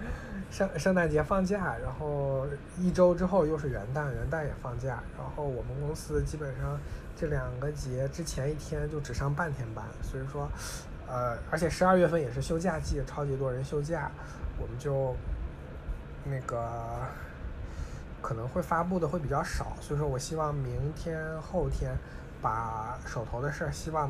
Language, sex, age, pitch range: Chinese, male, 20-39, 115-160 Hz